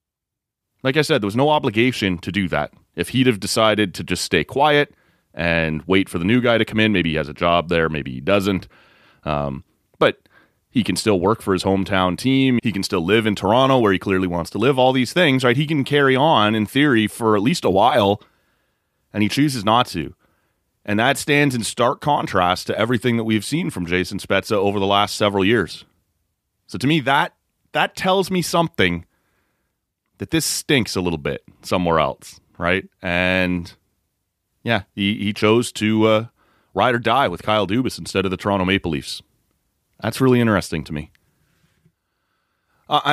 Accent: American